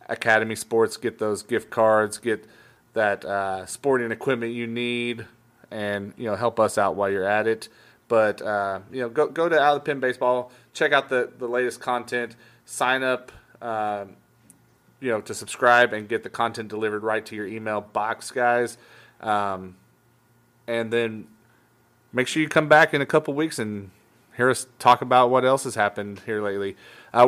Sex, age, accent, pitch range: male, 30-49, American, 110-125 Hz